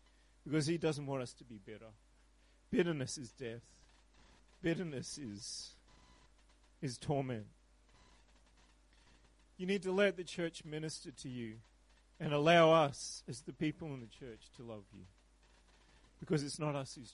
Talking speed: 145 wpm